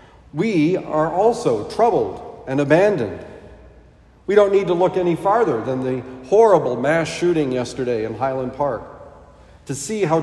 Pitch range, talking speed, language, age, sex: 130-195 Hz, 145 wpm, English, 50-69, male